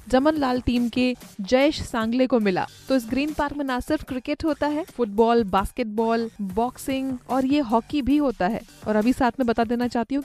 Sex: female